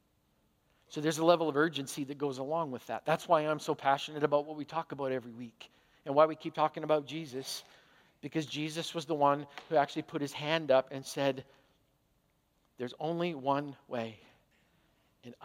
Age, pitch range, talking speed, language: 50-69, 140-165 Hz, 185 wpm, English